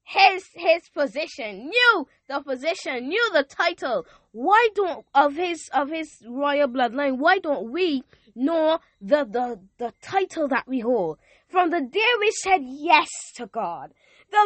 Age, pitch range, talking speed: 20-39, 235-365 Hz, 155 wpm